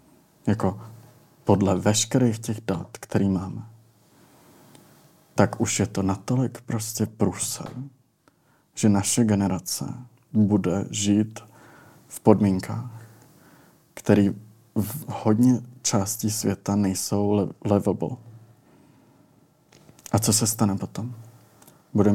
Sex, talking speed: male, 95 wpm